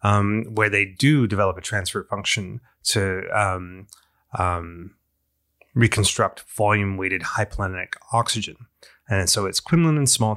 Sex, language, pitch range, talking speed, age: male, English, 95-115 Hz, 125 wpm, 30-49